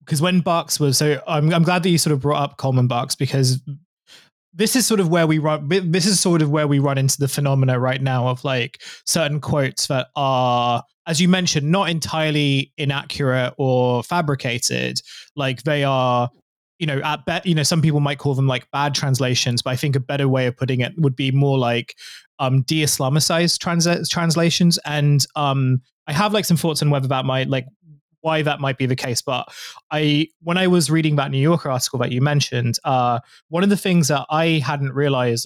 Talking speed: 210 wpm